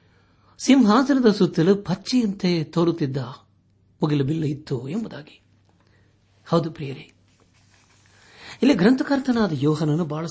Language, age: Kannada, 60-79